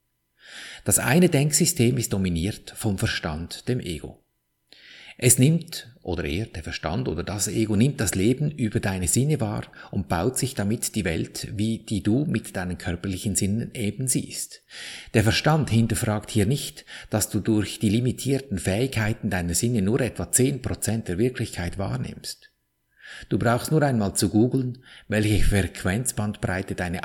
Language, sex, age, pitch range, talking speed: German, male, 50-69, 90-120 Hz, 150 wpm